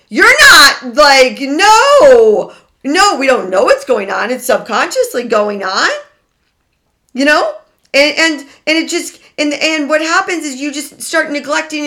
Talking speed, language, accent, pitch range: 155 wpm, English, American, 165-275 Hz